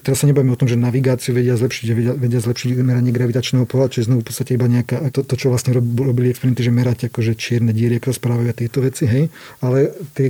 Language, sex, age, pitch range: Slovak, male, 40-59, 120-135 Hz